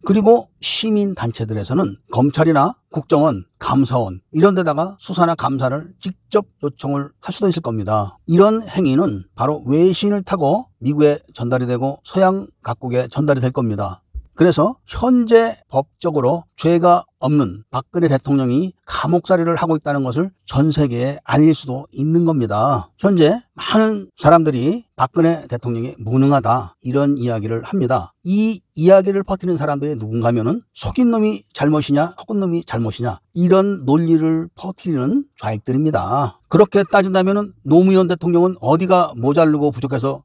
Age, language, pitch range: 40-59, Korean, 135-190 Hz